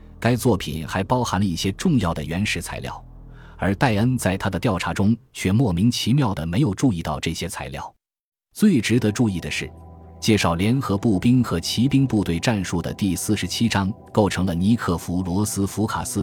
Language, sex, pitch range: Chinese, male, 85-115 Hz